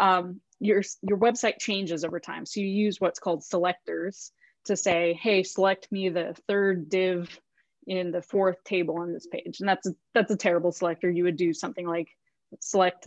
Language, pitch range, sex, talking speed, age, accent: English, 175-215 Hz, female, 190 wpm, 20-39, American